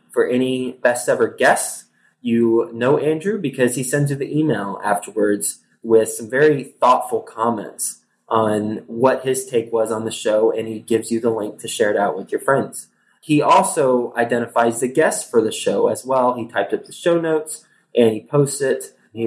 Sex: male